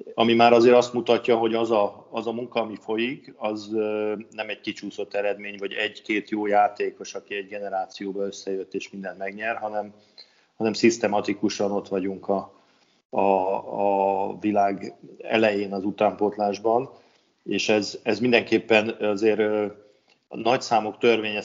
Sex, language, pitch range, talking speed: male, Hungarian, 100-110 Hz, 135 wpm